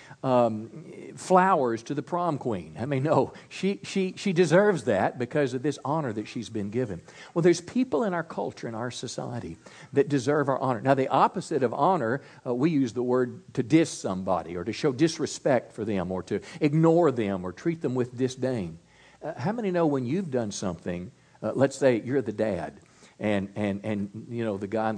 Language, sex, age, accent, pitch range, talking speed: English, male, 50-69, American, 110-155 Hz, 205 wpm